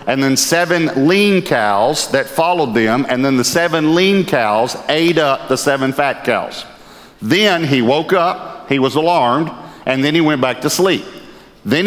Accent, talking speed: American, 175 wpm